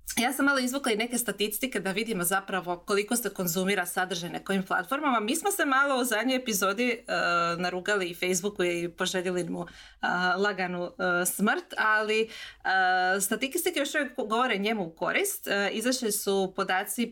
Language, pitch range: Croatian, 180-245 Hz